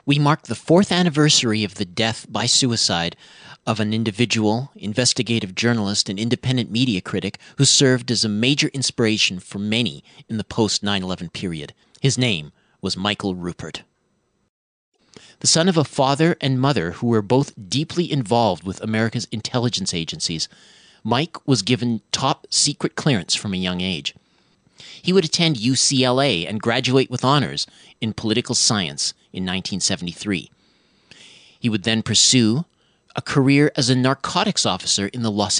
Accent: American